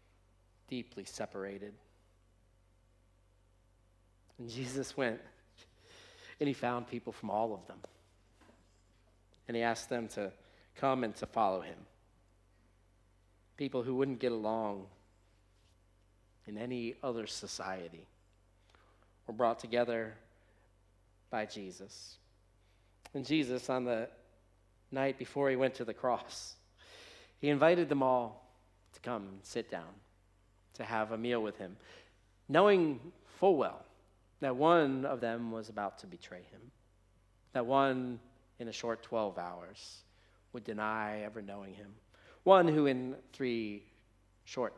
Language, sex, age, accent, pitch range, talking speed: English, male, 40-59, American, 95-115 Hz, 125 wpm